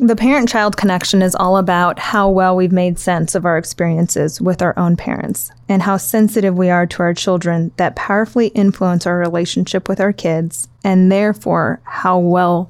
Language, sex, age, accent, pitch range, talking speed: English, female, 20-39, American, 175-205 Hz, 180 wpm